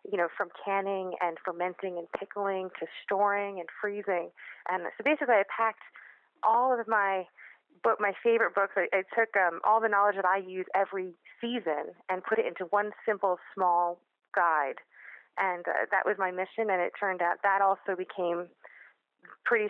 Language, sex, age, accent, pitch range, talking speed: English, female, 30-49, American, 175-205 Hz, 175 wpm